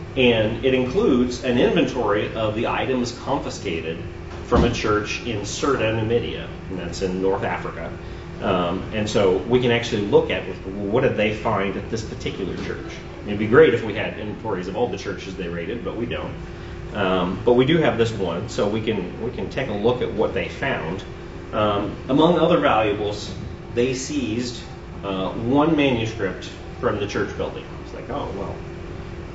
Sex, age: male, 30-49